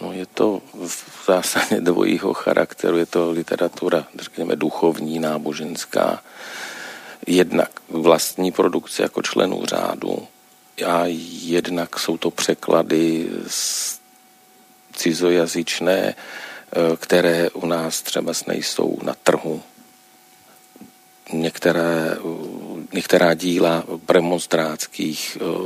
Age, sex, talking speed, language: 40-59, male, 80 wpm, Czech